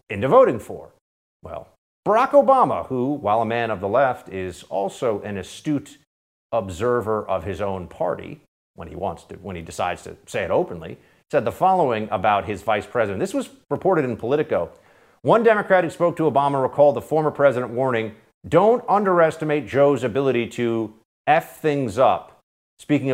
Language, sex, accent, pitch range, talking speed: English, male, American, 110-150 Hz, 170 wpm